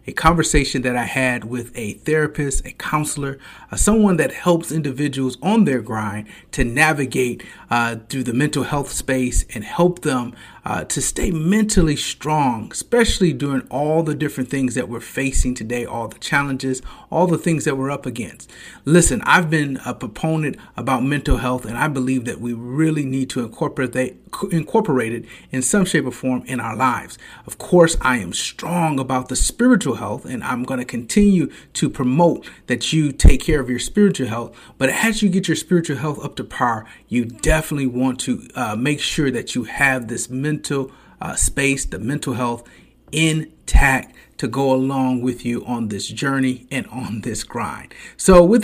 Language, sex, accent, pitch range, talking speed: English, male, American, 125-155 Hz, 180 wpm